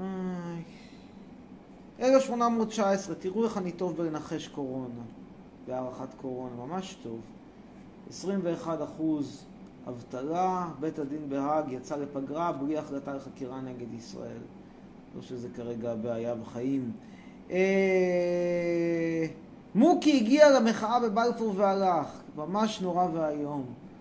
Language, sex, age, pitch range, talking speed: Hebrew, male, 30-49, 130-195 Hz, 105 wpm